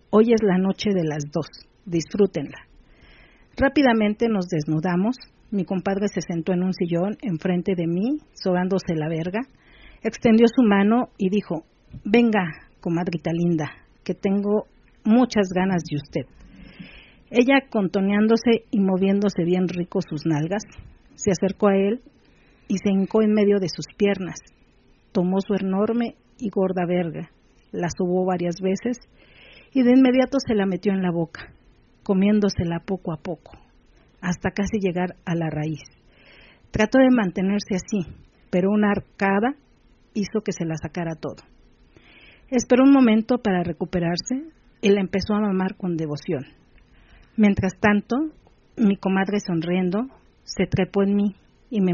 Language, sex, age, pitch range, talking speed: Spanish, female, 50-69, 180-215 Hz, 140 wpm